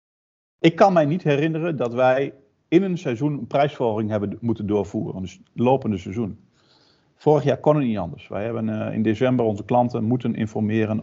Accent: Dutch